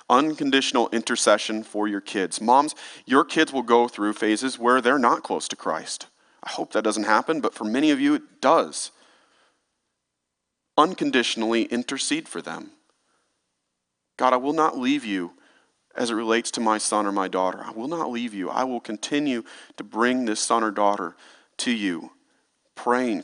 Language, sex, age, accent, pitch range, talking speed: English, male, 40-59, American, 100-120 Hz, 170 wpm